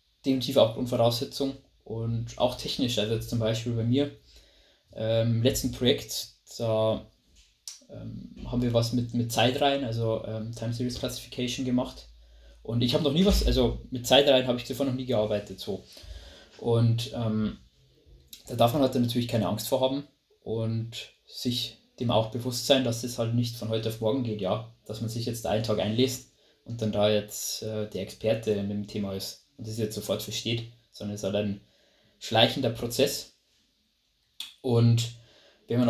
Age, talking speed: 20-39, 175 wpm